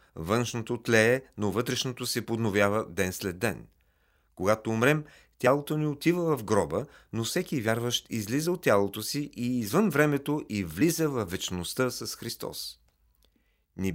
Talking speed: 140 wpm